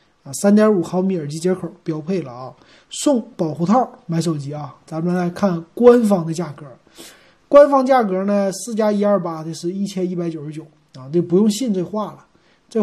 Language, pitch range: Chinese, 160-210 Hz